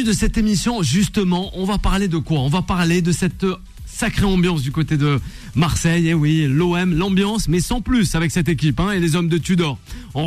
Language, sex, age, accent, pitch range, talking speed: French, male, 30-49, French, 145-190 Hz, 220 wpm